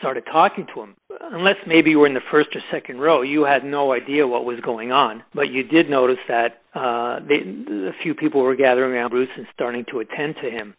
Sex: male